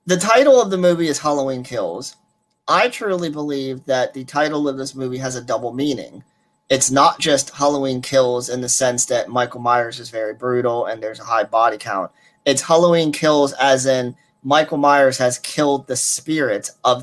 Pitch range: 125-145 Hz